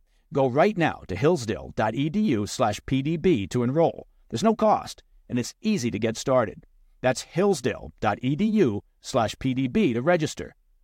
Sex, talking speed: male, 135 wpm